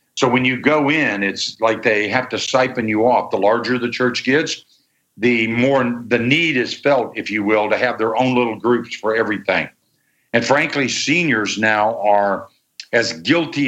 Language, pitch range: English, 110-130 Hz